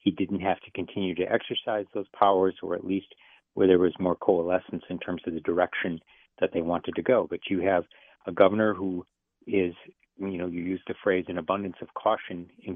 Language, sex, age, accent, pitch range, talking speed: English, male, 50-69, American, 85-95 Hz, 210 wpm